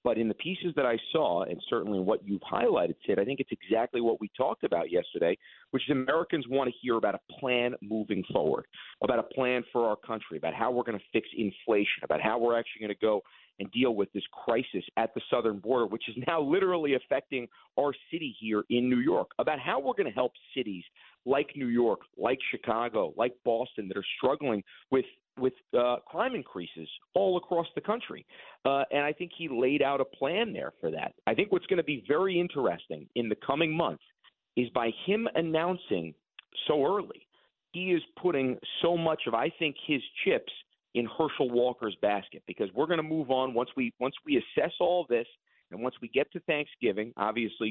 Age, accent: 40-59, American